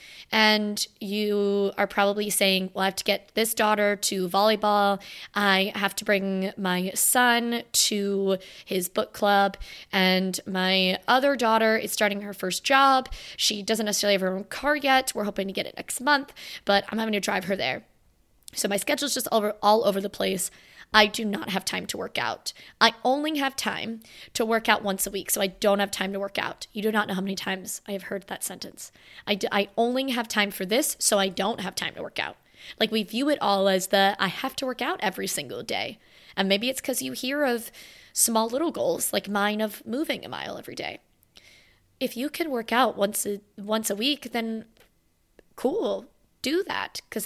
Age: 20-39